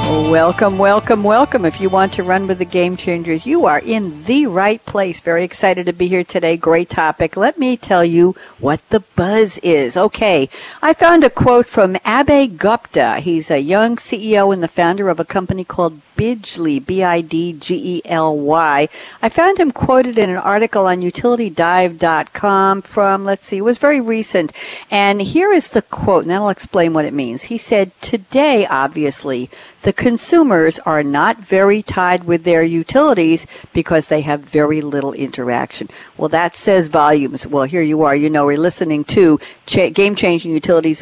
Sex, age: female, 60-79